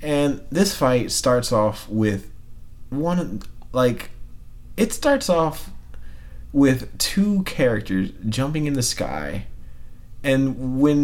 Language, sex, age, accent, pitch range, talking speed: English, male, 20-39, American, 100-145 Hz, 110 wpm